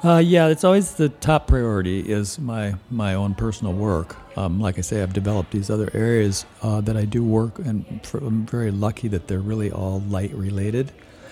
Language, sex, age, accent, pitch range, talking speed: English, male, 60-79, American, 100-115 Hz, 190 wpm